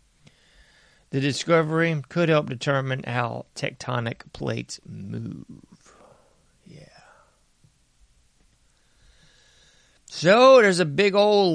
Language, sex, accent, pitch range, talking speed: English, male, American, 120-155 Hz, 80 wpm